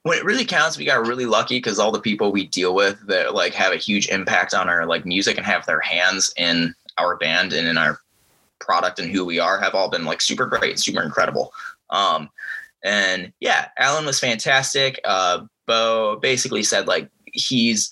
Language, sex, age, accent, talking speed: English, male, 20-39, American, 200 wpm